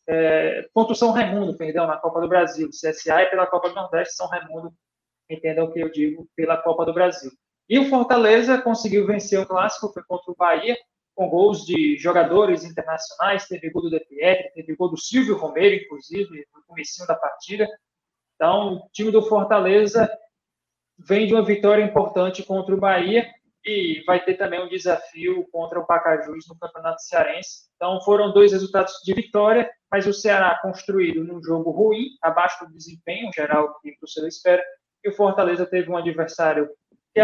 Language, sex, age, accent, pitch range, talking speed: Portuguese, male, 20-39, Brazilian, 165-205 Hz, 180 wpm